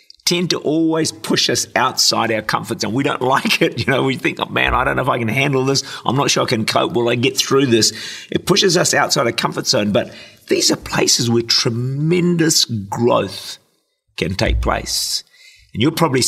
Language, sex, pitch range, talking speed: English, male, 105-140 Hz, 215 wpm